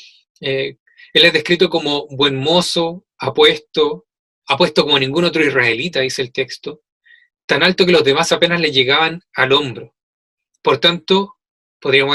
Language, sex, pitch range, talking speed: Spanish, male, 150-200 Hz, 145 wpm